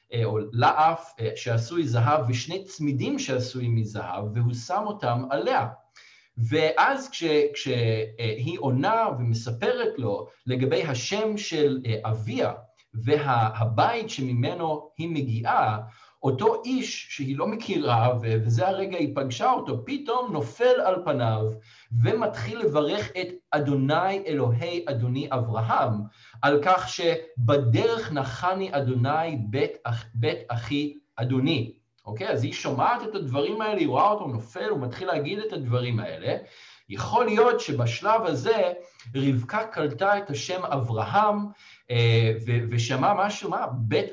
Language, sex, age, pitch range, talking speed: Hebrew, male, 50-69, 115-180 Hz, 115 wpm